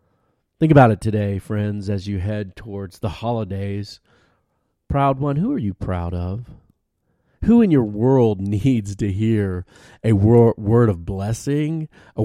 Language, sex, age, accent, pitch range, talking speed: English, male, 40-59, American, 100-125 Hz, 150 wpm